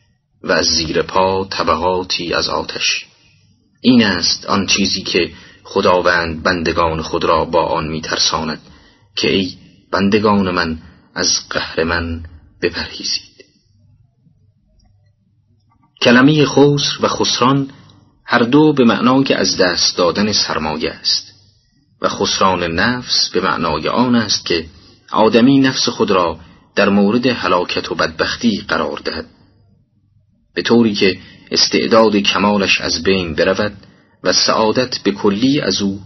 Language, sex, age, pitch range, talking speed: Persian, male, 30-49, 95-125 Hz, 120 wpm